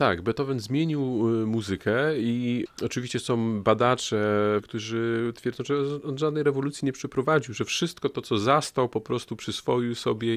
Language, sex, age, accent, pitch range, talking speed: Polish, male, 40-59, native, 105-125 Hz, 145 wpm